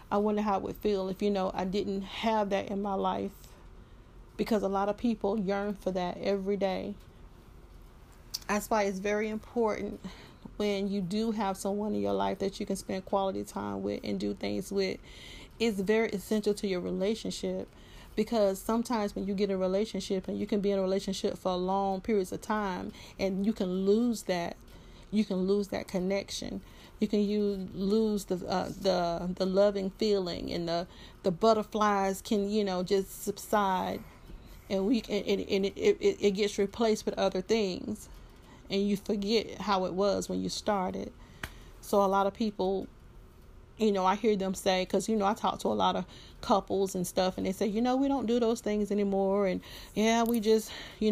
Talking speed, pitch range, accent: 190 wpm, 185-210 Hz, American